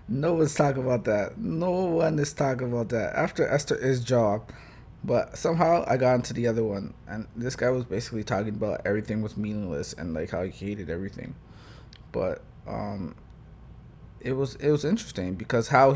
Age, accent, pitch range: 20-39, American, 105-125 Hz